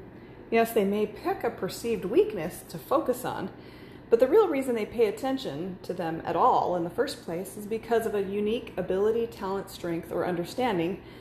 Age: 30-49